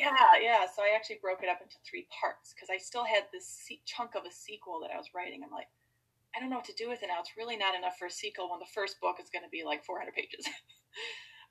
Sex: female